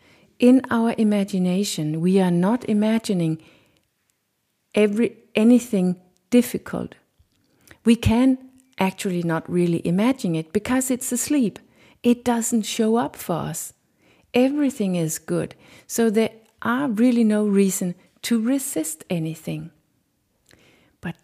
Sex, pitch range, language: female, 170-220 Hz, English